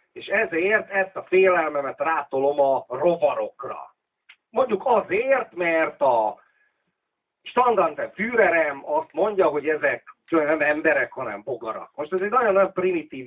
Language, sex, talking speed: Hungarian, male, 120 wpm